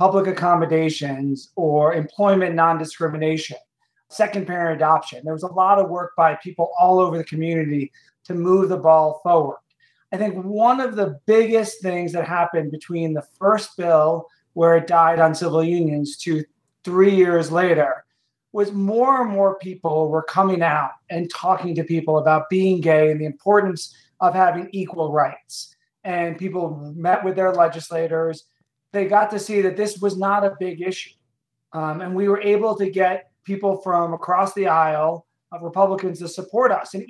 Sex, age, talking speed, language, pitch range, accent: male, 30-49, 170 wpm, English, 160-195 Hz, American